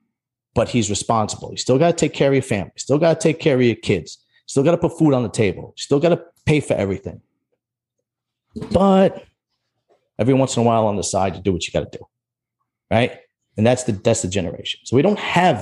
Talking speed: 230 wpm